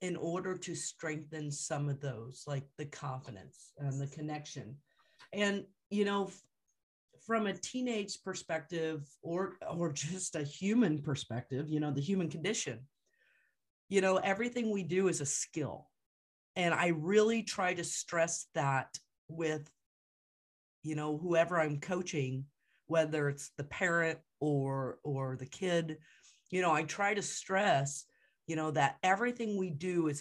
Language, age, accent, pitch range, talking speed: English, 40-59, American, 145-185 Hz, 145 wpm